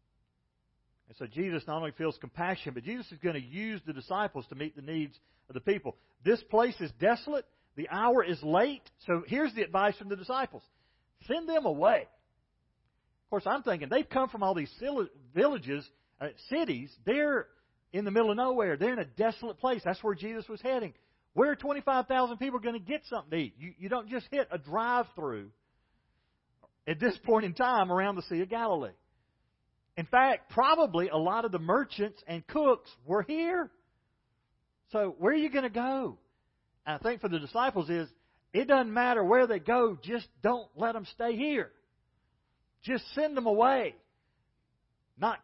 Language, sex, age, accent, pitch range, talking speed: English, male, 40-59, American, 155-250 Hz, 180 wpm